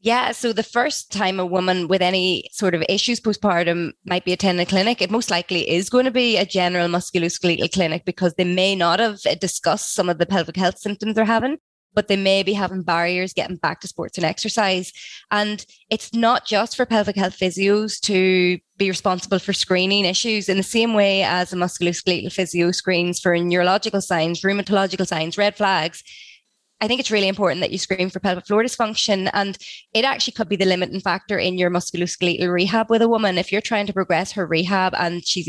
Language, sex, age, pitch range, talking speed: English, female, 20-39, 180-210 Hz, 205 wpm